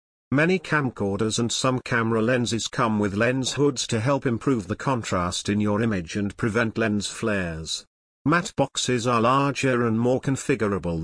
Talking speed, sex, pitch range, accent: 160 wpm, male, 105-135 Hz, British